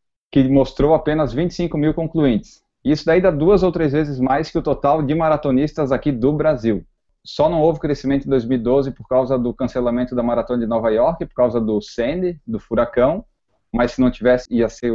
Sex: male